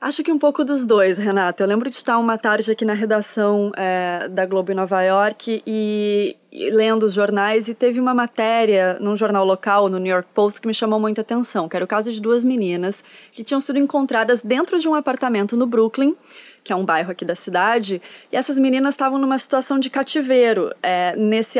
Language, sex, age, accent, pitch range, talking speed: Portuguese, female, 20-39, Brazilian, 200-265 Hz, 210 wpm